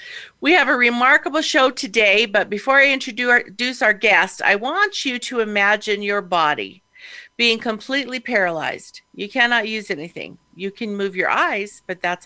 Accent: American